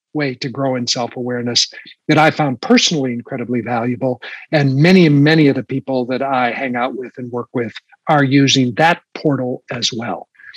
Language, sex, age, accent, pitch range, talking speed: English, male, 60-79, American, 140-190 Hz, 175 wpm